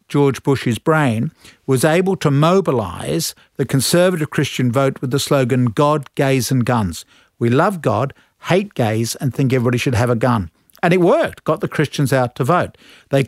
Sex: male